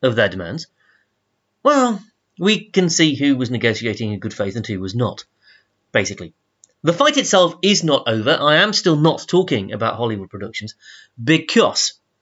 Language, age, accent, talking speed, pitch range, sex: English, 30-49, British, 160 wpm, 115-170 Hz, male